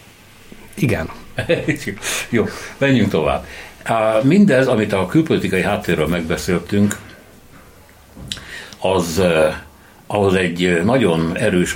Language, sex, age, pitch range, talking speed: Hungarian, male, 60-79, 80-100 Hz, 80 wpm